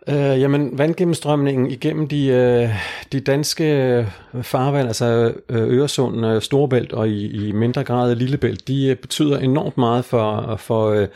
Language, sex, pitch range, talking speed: Danish, male, 110-130 Hz, 120 wpm